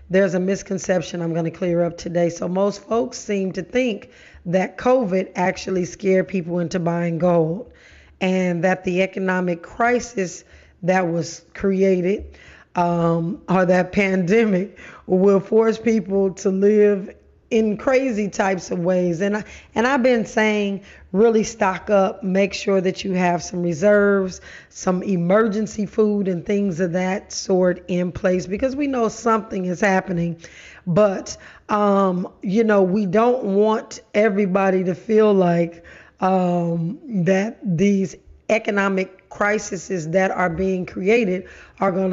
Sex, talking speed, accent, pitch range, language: female, 140 wpm, American, 180-210 Hz, English